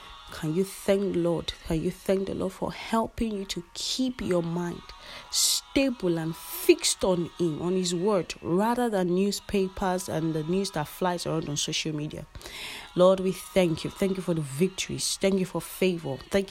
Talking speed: 180 wpm